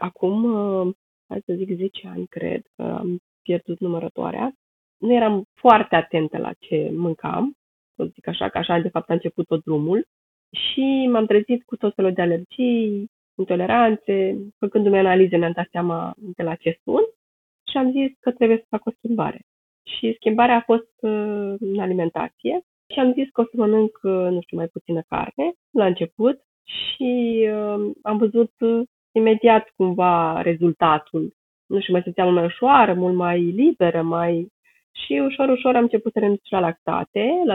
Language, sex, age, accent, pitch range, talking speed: Romanian, female, 20-39, native, 175-230 Hz, 165 wpm